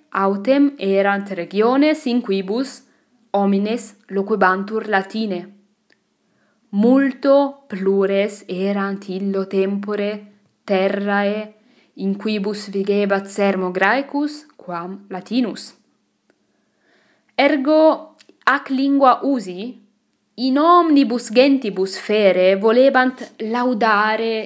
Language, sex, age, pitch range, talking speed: English, female, 20-39, 195-250 Hz, 70 wpm